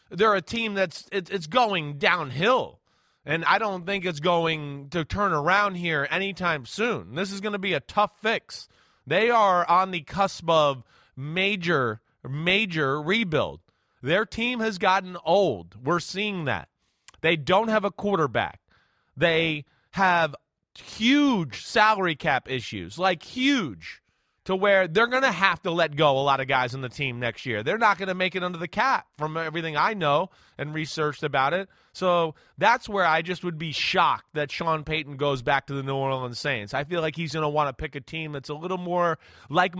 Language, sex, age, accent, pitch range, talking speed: English, male, 30-49, American, 145-190 Hz, 190 wpm